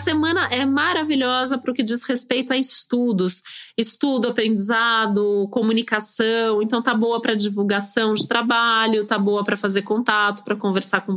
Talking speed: 150 wpm